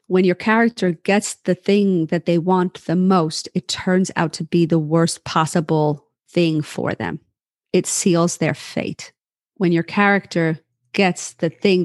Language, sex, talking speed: English, female, 160 wpm